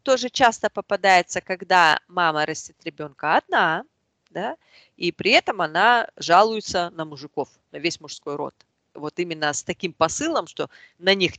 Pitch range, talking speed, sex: 155-220 Hz, 150 wpm, female